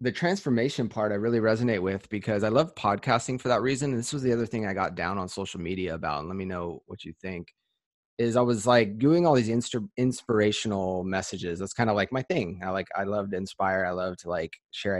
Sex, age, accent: male, 20-39, American